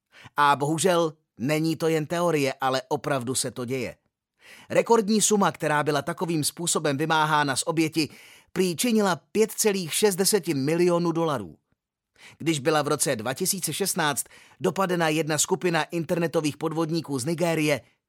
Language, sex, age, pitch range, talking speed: Czech, male, 30-49, 140-185 Hz, 120 wpm